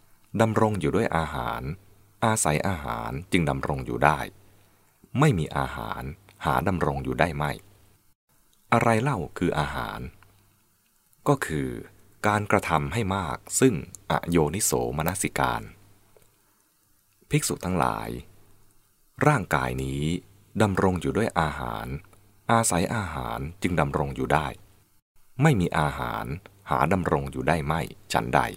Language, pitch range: English, 70-105 Hz